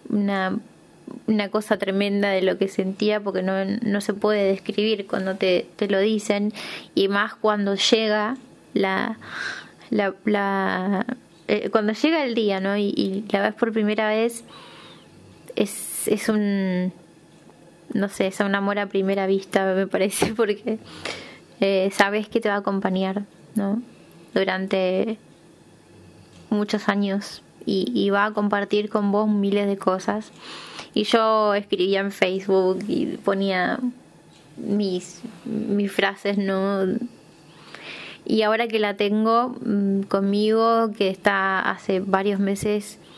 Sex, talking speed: female, 135 wpm